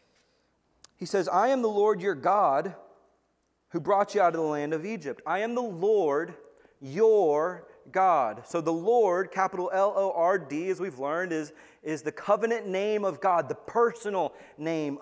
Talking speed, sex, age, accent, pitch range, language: 165 wpm, male, 30-49, American, 155-210 Hz, English